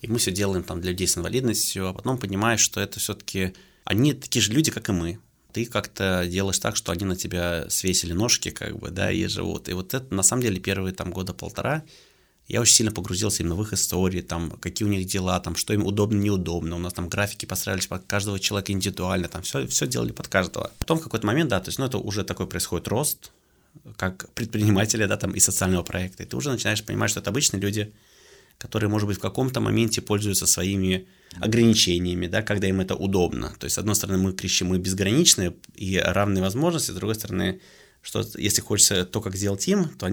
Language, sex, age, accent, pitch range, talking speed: Russian, male, 20-39, native, 95-115 Hz, 220 wpm